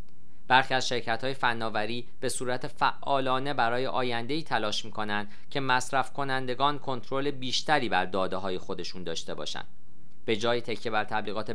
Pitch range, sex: 110-140 Hz, male